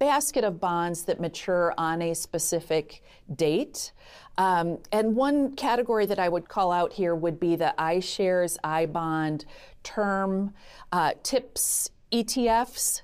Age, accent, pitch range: 40-59, American, 155-190 Hz